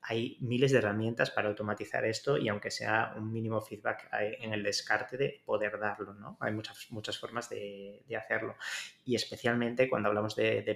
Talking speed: 185 wpm